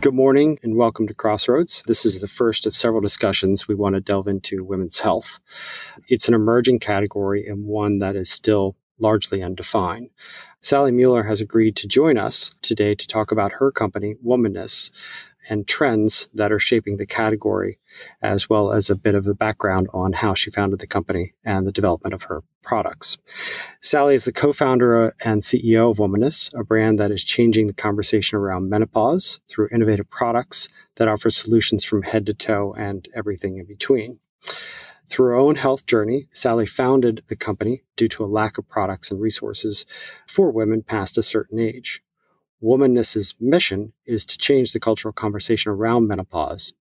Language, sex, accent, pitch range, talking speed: English, male, American, 105-115 Hz, 175 wpm